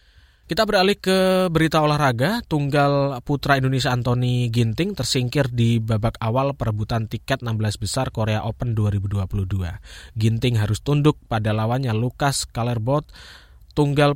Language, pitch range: Indonesian, 110-140 Hz